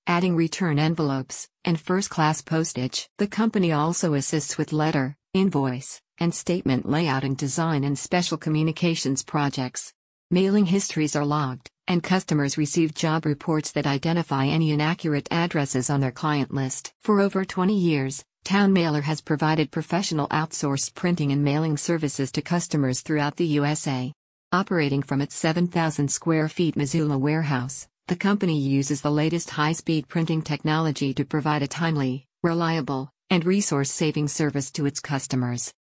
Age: 50-69